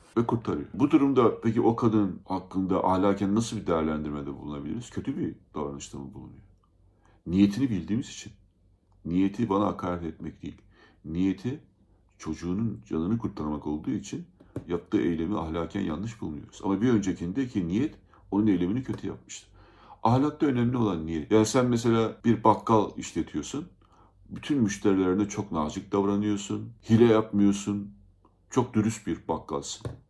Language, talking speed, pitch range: Turkish, 130 wpm, 95-115 Hz